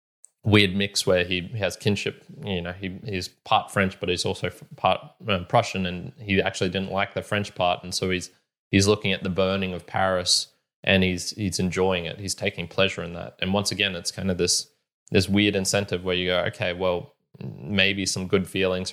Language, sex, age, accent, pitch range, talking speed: English, male, 20-39, Australian, 90-105 Hz, 200 wpm